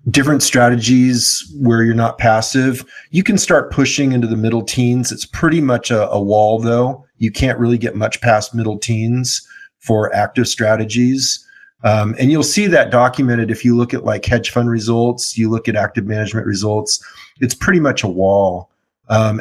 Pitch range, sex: 105-125 Hz, male